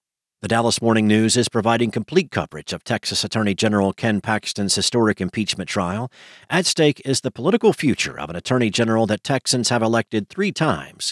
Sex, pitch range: male, 105-135 Hz